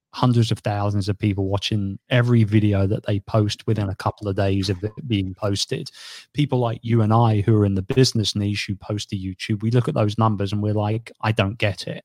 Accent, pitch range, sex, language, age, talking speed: British, 100-120 Hz, male, English, 30-49, 235 wpm